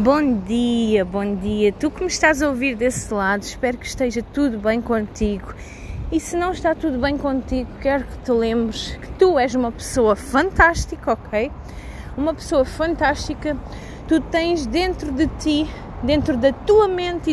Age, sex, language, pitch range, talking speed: 20-39, female, Portuguese, 255-325 Hz, 165 wpm